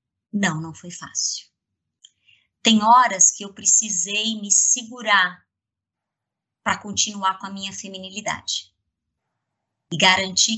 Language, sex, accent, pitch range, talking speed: Portuguese, male, Brazilian, 165-215 Hz, 110 wpm